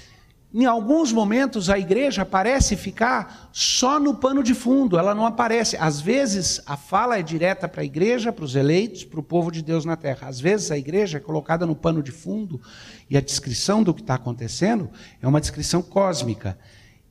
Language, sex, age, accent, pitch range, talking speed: Portuguese, male, 60-79, Brazilian, 130-215 Hz, 195 wpm